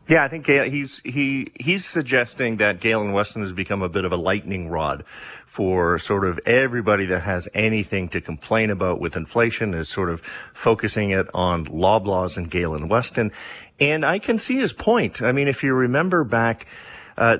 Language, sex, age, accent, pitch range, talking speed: English, male, 40-59, American, 95-120 Hz, 185 wpm